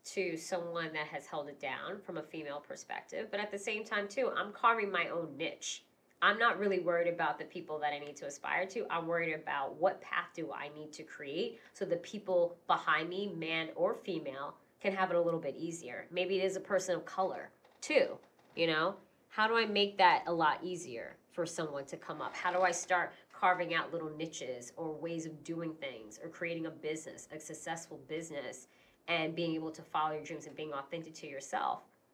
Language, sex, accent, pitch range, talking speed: English, female, American, 150-180 Hz, 215 wpm